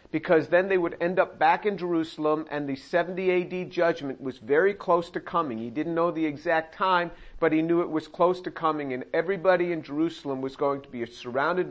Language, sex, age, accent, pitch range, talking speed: English, male, 50-69, American, 155-180 Hz, 215 wpm